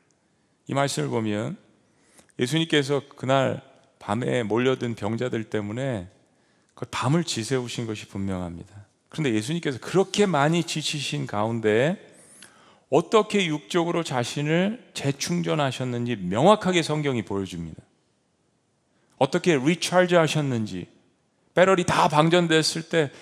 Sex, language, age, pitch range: male, Korean, 40-59, 110-165 Hz